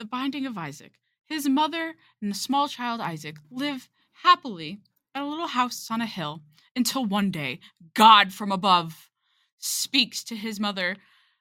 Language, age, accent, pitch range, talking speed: English, 20-39, American, 195-285 Hz, 160 wpm